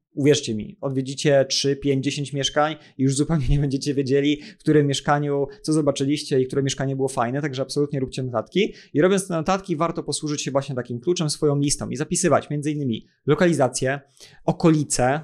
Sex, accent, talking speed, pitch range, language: male, native, 175 wpm, 130-150 Hz, Polish